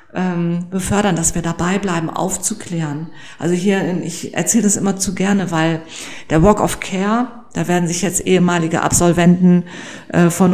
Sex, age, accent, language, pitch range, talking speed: female, 40-59, German, German, 170-190 Hz, 150 wpm